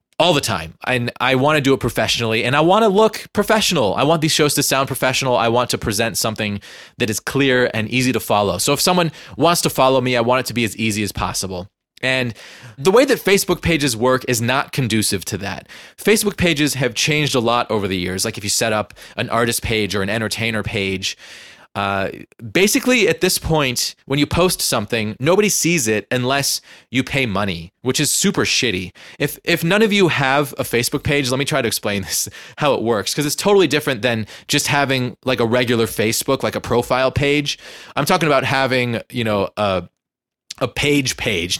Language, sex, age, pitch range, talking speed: English, male, 20-39, 110-145 Hz, 210 wpm